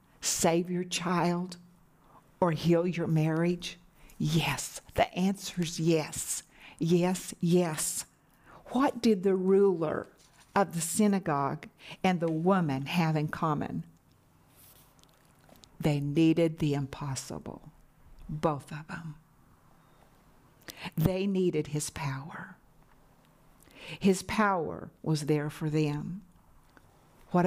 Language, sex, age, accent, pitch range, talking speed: English, female, 50-69, American, 160-220 Hz, 95 wpm